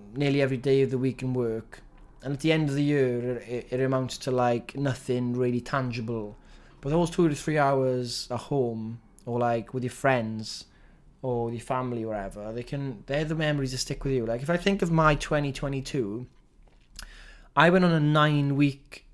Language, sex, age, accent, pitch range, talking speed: English, male, 20-39, British, 115-140 Hz, 200 wpm